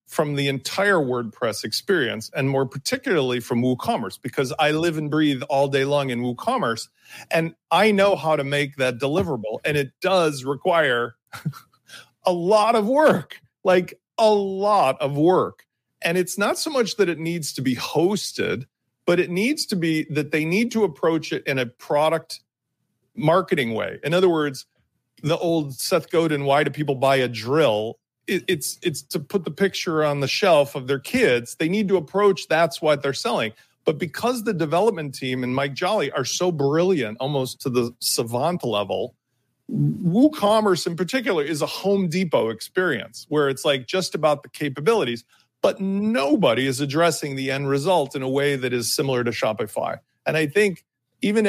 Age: 40-59